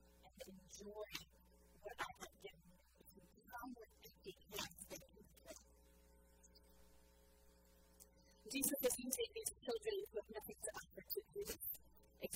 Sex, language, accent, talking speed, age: female, English, American, 135 wpm, 40-59